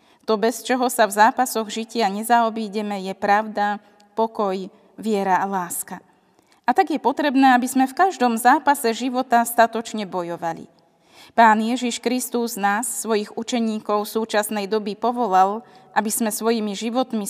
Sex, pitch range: female, 205-240 Hz